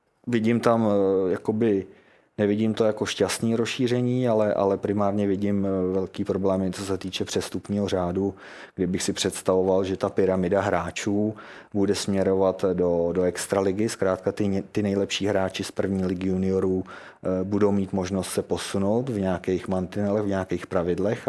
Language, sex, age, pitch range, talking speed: Czech, male, 30-49, 90-100 Hz, 145 wpm